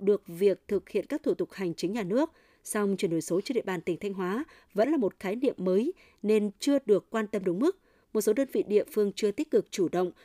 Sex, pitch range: female, 185-240 Hz